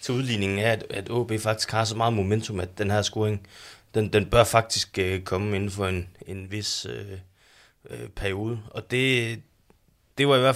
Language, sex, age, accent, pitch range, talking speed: Danish, male, 20-39, native, 95-115 Hz, 190 wpm